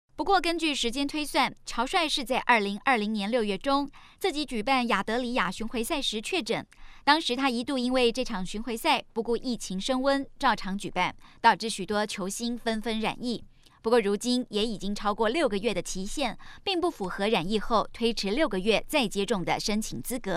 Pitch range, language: 210-270 Hz, Chinese